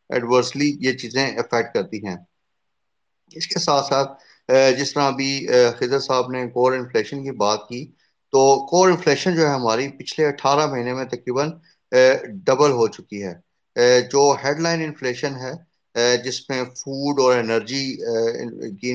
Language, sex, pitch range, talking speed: Urdu, male, 120-145 Hz, 150 wpm